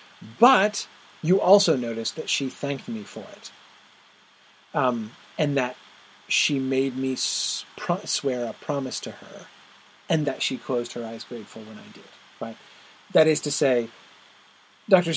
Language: English